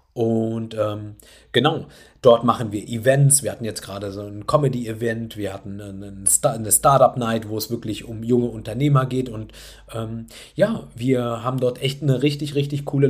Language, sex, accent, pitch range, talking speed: German, male, German, 110-135 Hz, 170 wpm